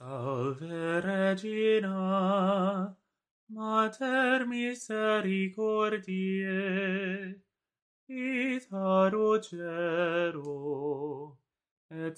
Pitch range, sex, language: 165-215 Hz, male, English